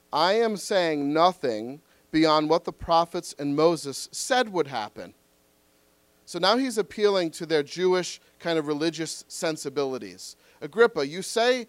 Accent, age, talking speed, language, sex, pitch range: American, 40-59, 140 wpm, English, male, 140-190 Hz